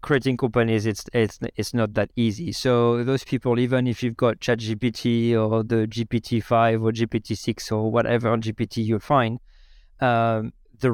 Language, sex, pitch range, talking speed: English, male, 115-130 Hz, 160 wpm